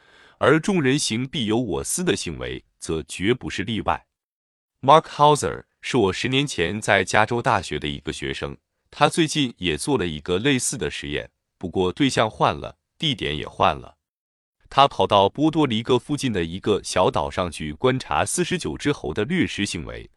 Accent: native